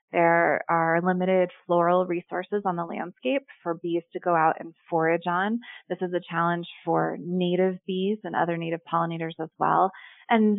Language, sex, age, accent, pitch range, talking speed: English, female, 20-39, American, 170-195 Hz, 170 wpm